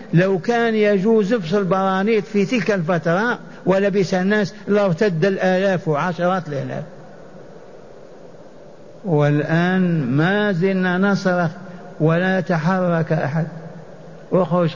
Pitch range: 175-205 Hz